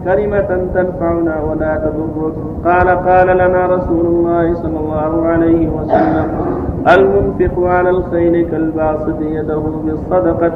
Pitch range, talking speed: 155-180 Hz, 110 wpm